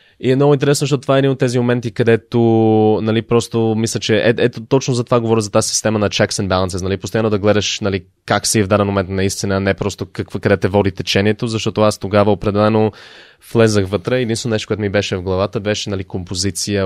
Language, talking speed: Bulgarian, 225 wpm